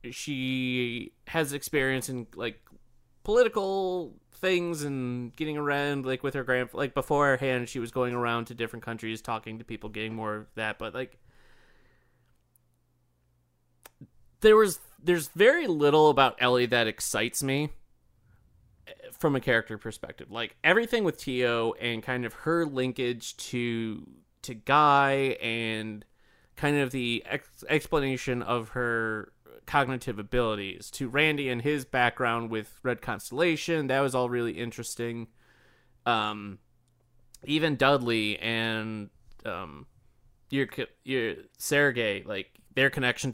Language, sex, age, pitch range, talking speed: English, male, 30-49, 115-140 Hz, 130 wpm